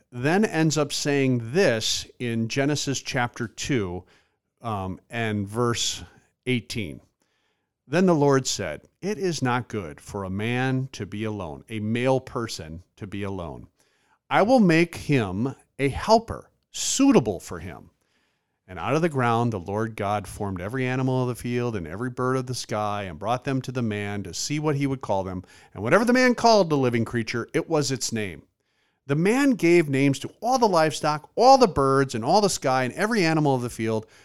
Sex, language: male, English